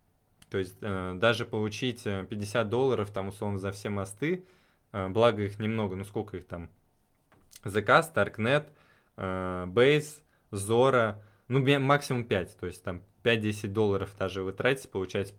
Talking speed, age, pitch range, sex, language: 135 wpm, 20-39, 100-115 Hz, male, Russian